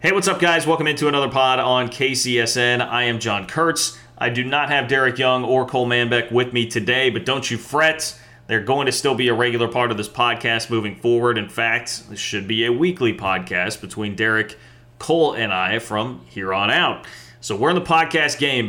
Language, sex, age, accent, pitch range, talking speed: English, male, 30-49, American, 110-130 Hz, 210 wpm